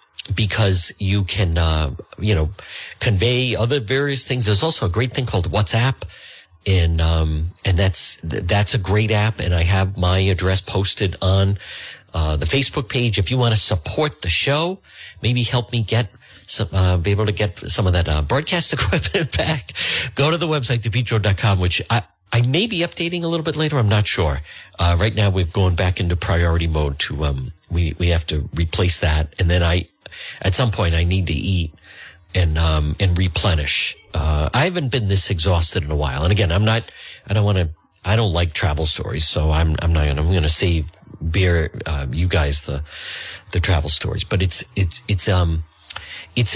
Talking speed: 200 wpm